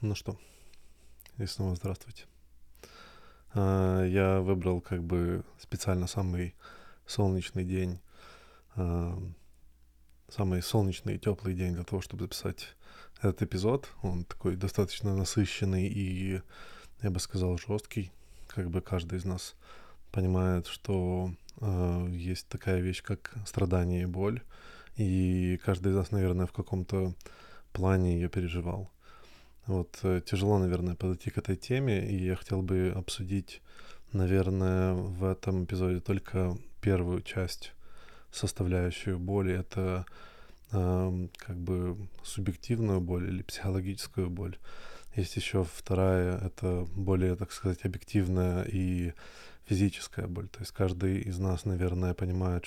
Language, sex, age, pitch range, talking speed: Russian, male, 20-39, 90-95 Hz, 120 wpm